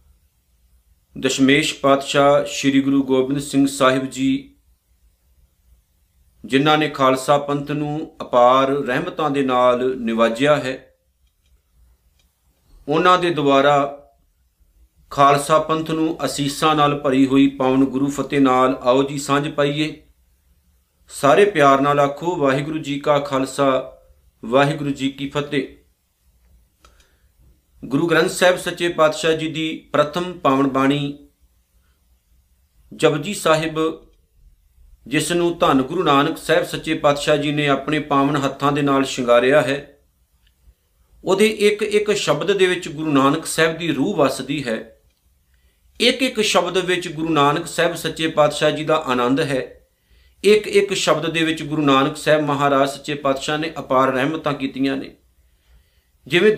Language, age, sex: Punjabi, 50-69, male